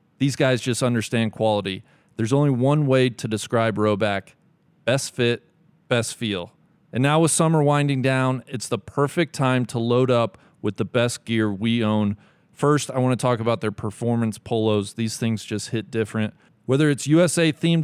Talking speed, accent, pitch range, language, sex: 175 wpm, American, 110-140 Hz, English, male